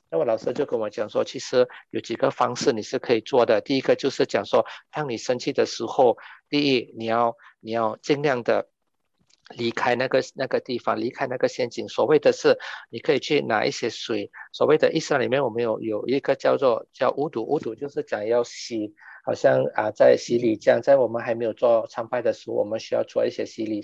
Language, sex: English, male